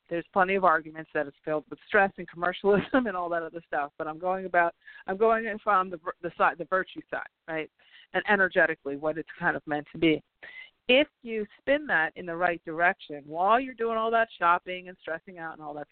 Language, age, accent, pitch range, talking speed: English, 50-69, American, 165-215 Hz, 220 wpm